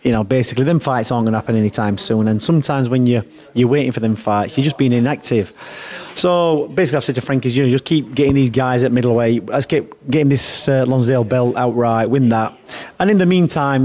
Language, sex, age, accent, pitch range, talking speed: English, male, 30-49, British, 115-140 Hz, 230 wpm